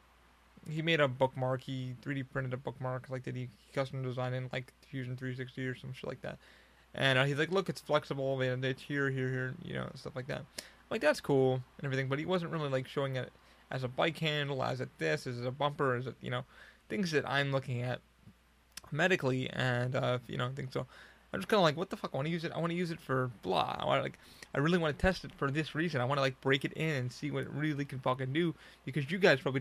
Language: English